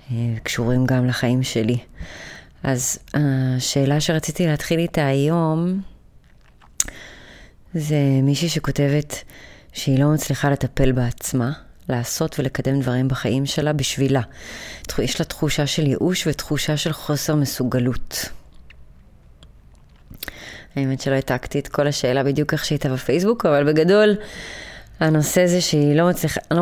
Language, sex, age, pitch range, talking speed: Hebrew, female, 30-49, 135-160 Hz, 115 wpm